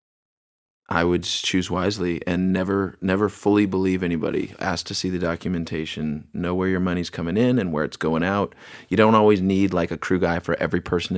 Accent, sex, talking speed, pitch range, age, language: American, male, 200 wpm, 85-95 Hz, 30-49, English